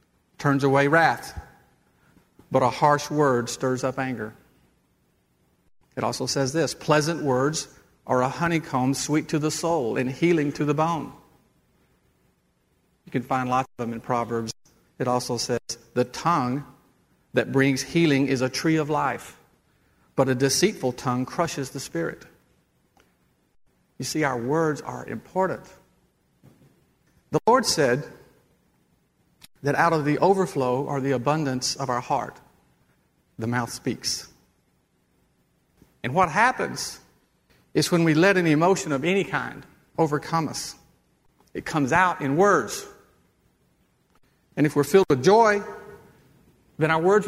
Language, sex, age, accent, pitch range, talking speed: English, male, 50-69, American, 125-160 Hz, 135 wpm